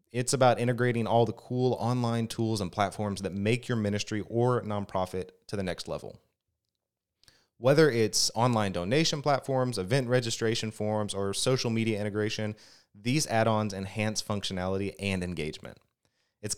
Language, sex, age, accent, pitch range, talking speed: English, male, 30-49, American, 100-120 Hz, 140 wpm